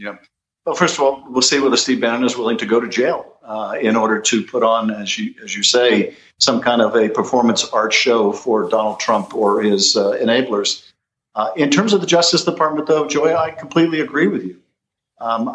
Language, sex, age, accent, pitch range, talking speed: English, male, 50-69, American, 125-155 Hz, 215 wpm